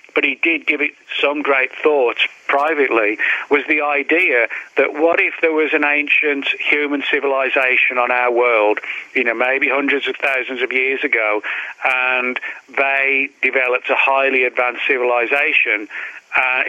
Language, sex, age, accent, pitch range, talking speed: English, male, 40-59, British, 125-145 Hz, 145 wpm